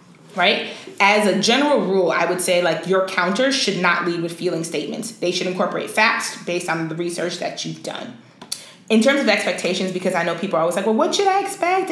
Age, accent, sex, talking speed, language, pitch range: 20-39, American, female, 220 wpm, English, 175-230 Hz